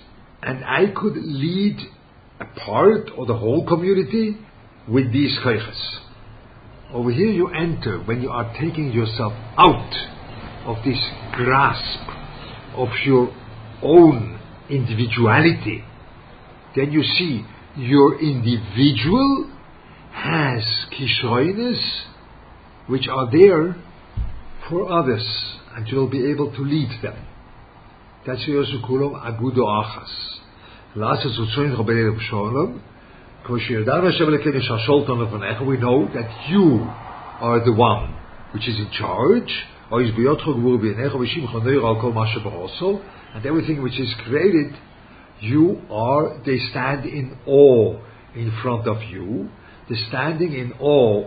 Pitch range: 115-140 Hz